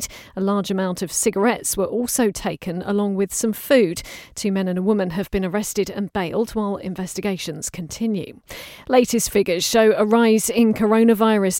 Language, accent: English, British